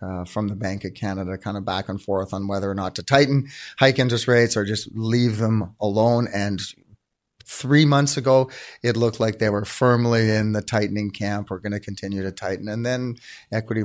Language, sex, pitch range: English, male, 100-115 Hz